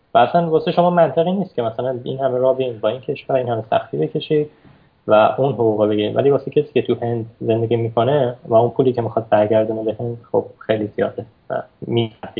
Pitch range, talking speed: 115-145 Hz, 205 wpm